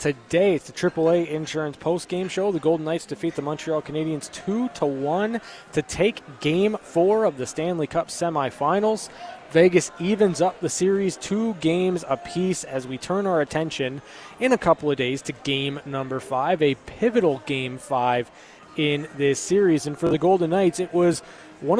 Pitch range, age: 145-185 Hz, 20-39